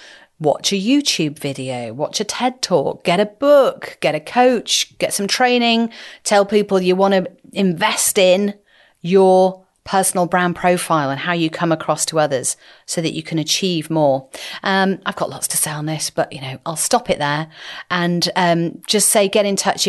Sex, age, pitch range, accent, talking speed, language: female, 40-59, 155-220 Hz, British, 190 wpm, English